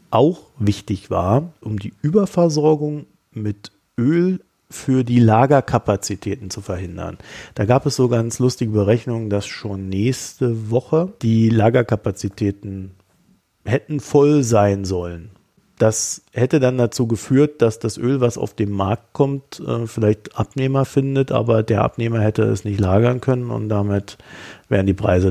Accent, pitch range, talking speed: German, 100-125 Hz, 140 wpm